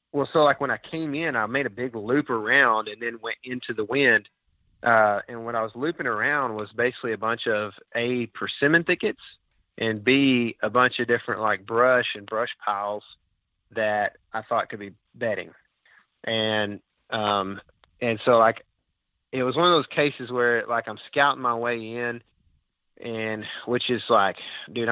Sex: male